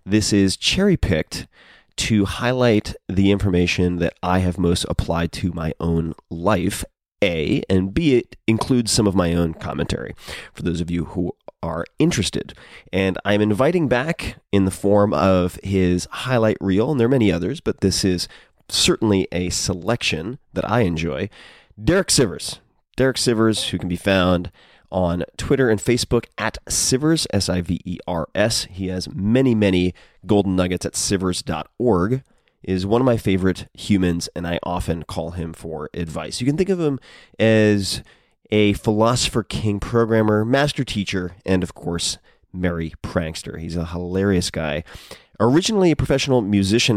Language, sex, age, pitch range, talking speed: English, male, 30-49, 90-115 Hz, 155 wpm